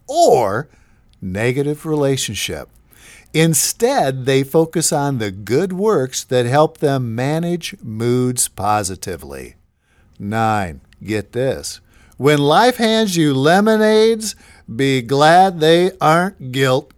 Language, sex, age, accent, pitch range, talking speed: English, male, 50-69, American, 125-180 Hz, 105 wpm